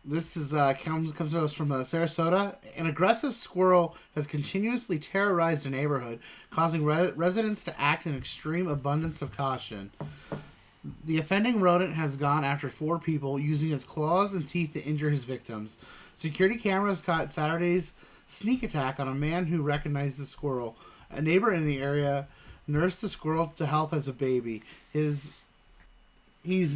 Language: English